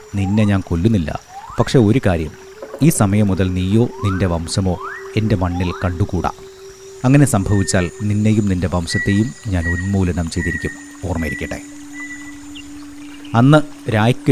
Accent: native